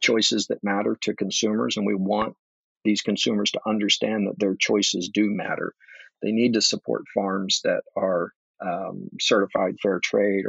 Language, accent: English, American